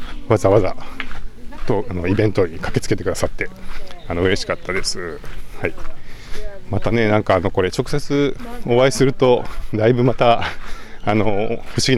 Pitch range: 90-115 Hz